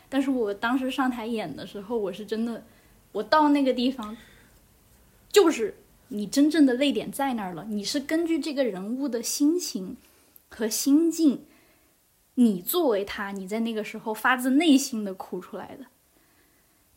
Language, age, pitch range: Chinese, 10-29, 215-275 Hz